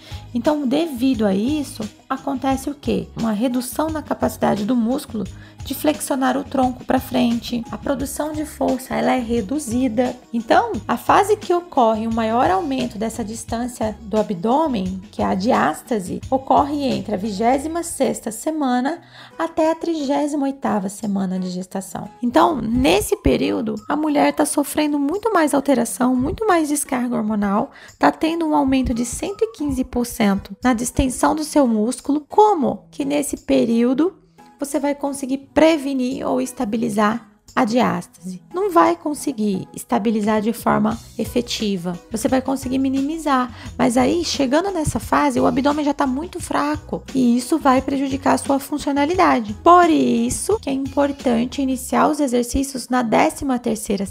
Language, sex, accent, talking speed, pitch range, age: Portuguese, female, Brazilian, 145 wpm, 235-300 Hz, 20-39